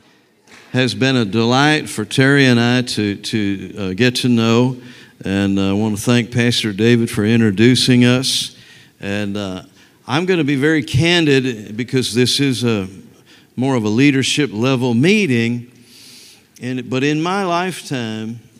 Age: 50-69